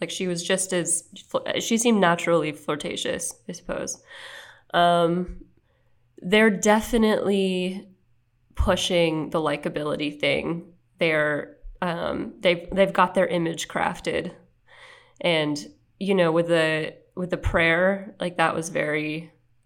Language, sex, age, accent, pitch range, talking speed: English, female, 20-39, American, 165-200 Hz, 120 wpm